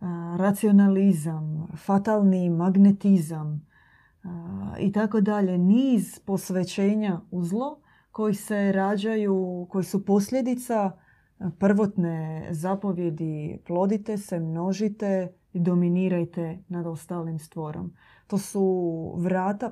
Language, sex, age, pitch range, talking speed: Croatian, female, 20-39, 170-205 Hz, 90 wpm